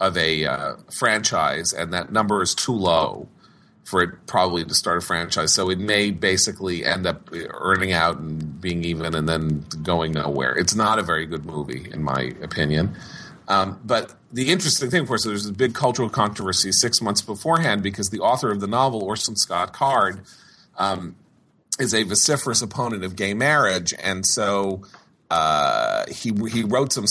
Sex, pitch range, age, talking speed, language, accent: male, 85-110 Hz, 40-59, 175 wpm, English, American